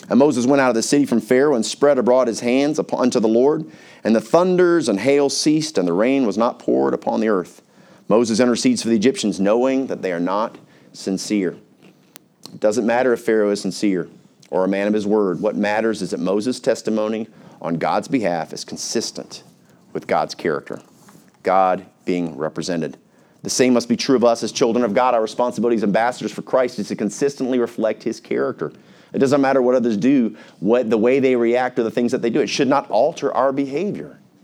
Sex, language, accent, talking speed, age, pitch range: male, English, American, 210 wpm, 40-59, 105-140 Hz